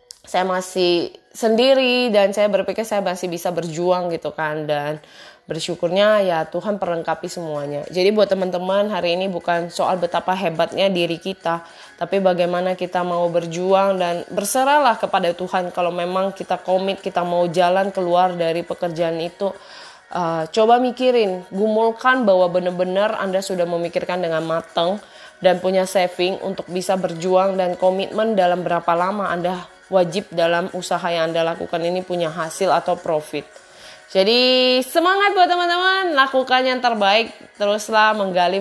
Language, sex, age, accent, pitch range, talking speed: Indonesian, female, 20-39, native, 175-205 Hz, 145 wpm